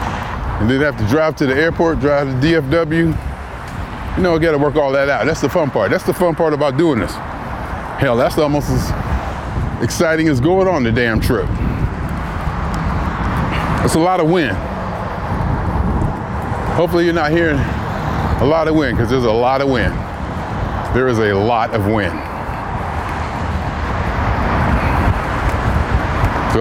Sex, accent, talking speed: male, American, 150 wpm